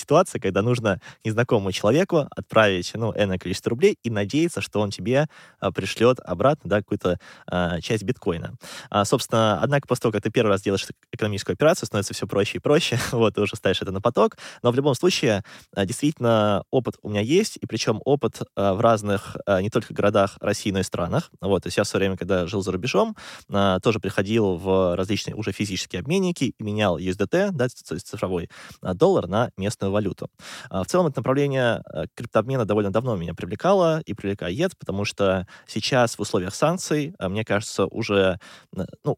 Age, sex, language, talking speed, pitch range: 20-39, male, Russian, 180 wpm, 95-125 Hz